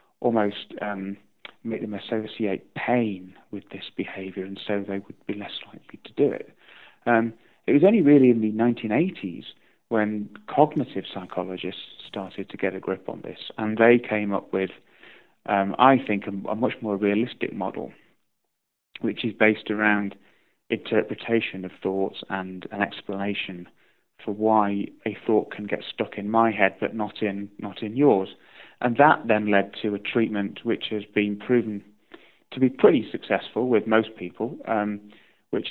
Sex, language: male, English